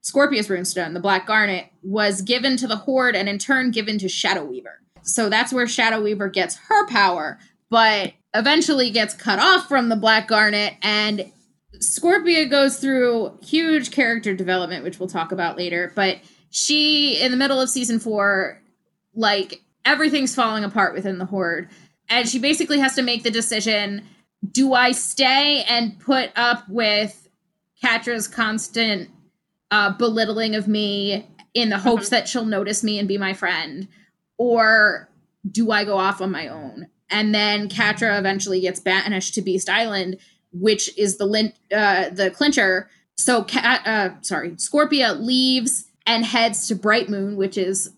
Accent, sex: American, female